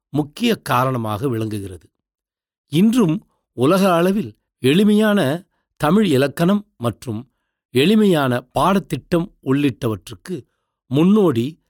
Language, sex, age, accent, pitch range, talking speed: Tamil, male, 60-79, native, 120-180 Hz, 70 wpm